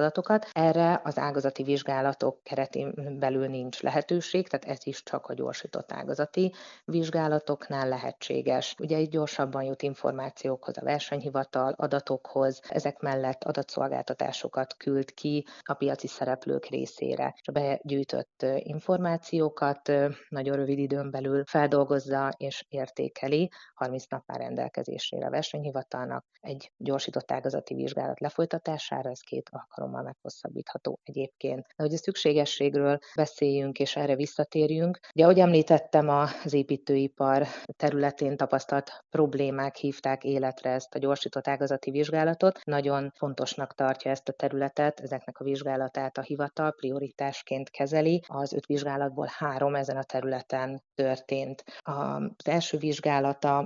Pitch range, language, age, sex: 135-150 Hz, Hungarian, 30-49, female